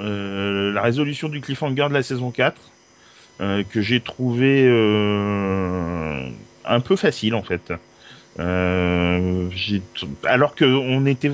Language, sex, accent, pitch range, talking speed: French, male, French, 105-130 Hz, 130 wpm